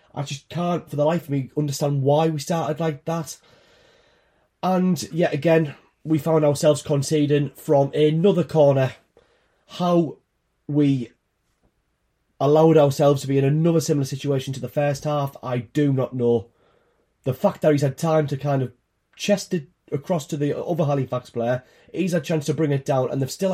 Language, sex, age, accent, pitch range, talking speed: English, male, 30-49, British, 140-160 Hz, 180 wpm